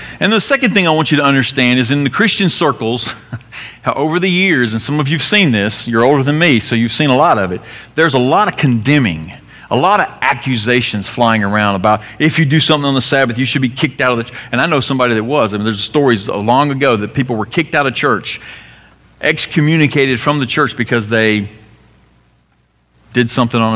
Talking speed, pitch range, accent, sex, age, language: 225 wpm, 105-140 Hz, American, male, 40-59, English